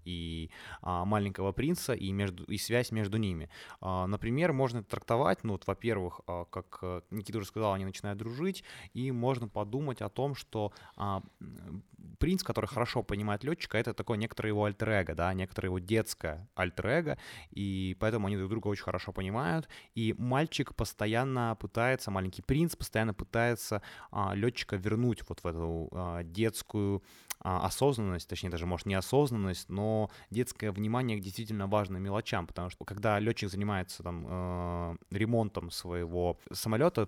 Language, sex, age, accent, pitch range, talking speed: Ukrainian, male, 20-39, native, 90-110 Hz, 140 wpm